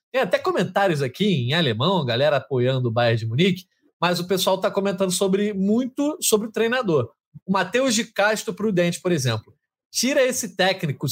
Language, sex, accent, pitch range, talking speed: Portuguese, male, Brazilian, 145-215 Hz, 175 wpm